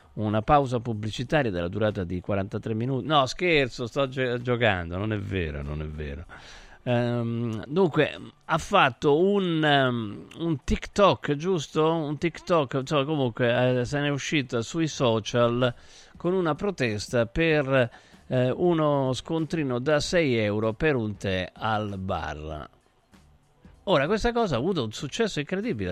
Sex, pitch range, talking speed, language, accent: male, 105-150 Hz, 135 wpm, Italian, native